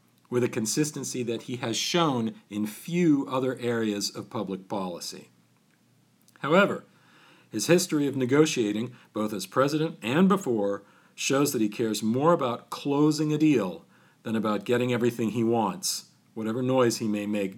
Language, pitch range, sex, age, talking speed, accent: English, 105-145 Hz, male, 50-69, 150 wpm, American